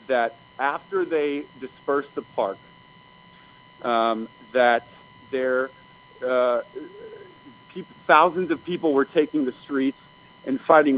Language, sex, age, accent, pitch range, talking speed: English, male, 40-59, American, 135-175 Hz, 110 wpm